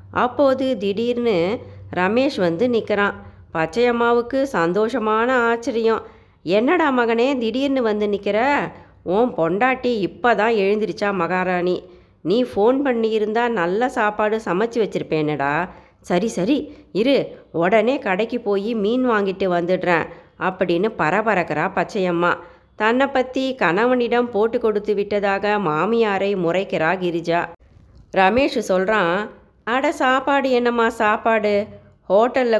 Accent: native